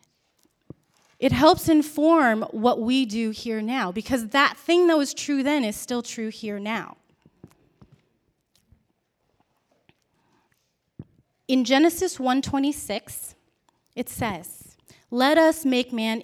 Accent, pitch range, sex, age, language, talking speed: American, 220-275 Hz, female, 30-49, English, 105 wpm